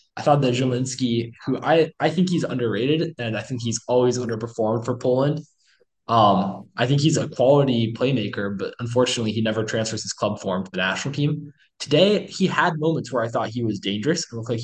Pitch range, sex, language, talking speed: 110-140 Hz, male, English, 205 wpm